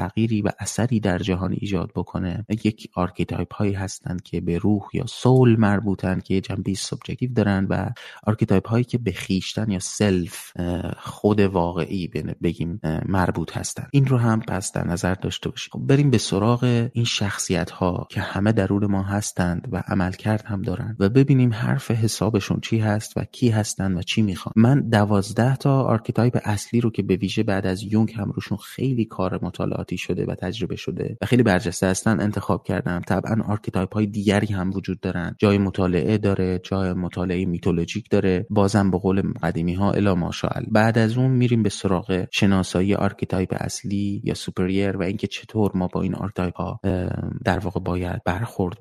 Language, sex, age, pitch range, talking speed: Persian, male, 30-49, 95-110 Hz, 175 wpm